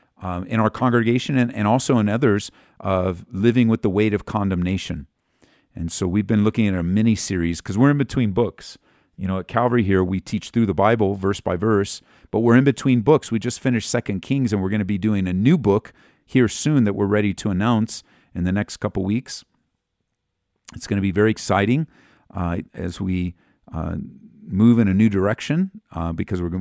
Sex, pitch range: male, 95-115 Hz